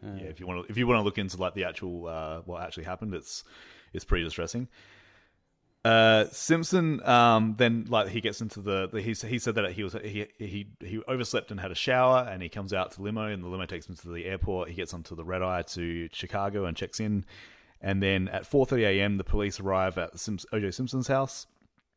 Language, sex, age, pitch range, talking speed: English, male, 30-49, 90-115 Hz, 235 wpm